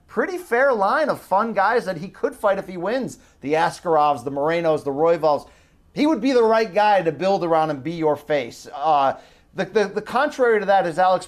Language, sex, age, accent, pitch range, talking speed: English, male, 30-49, American, 170-225 Hz, 220 wpm